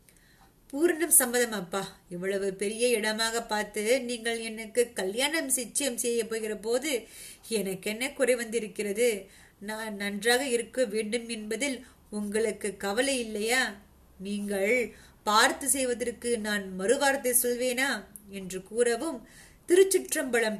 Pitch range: 220-270 Hz